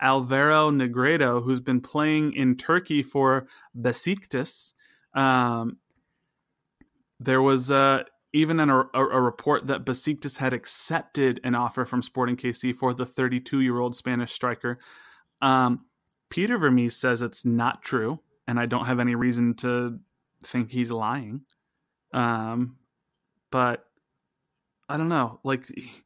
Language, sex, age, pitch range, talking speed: English, male, 20-39, 125-150 Hz, 125 wpm